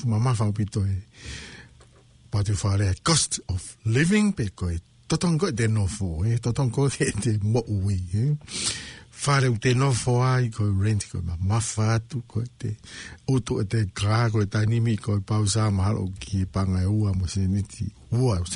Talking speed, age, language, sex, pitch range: 60 wpm, 60-79, English, male, 100-125 Hz